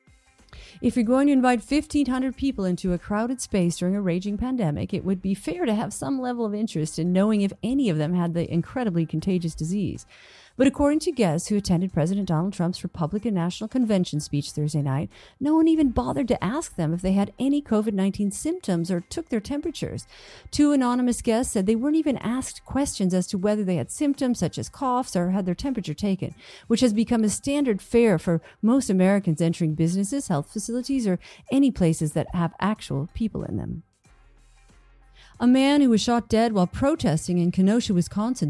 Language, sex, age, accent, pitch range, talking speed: English, female, 50-69, American, 175-250 Hz, 195 wpm